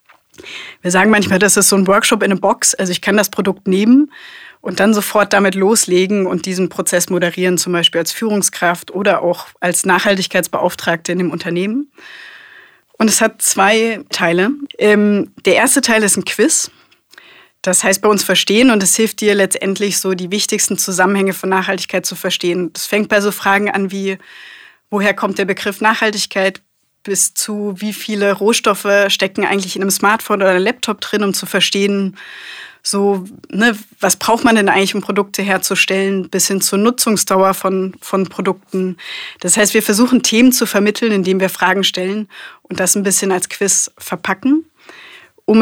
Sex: female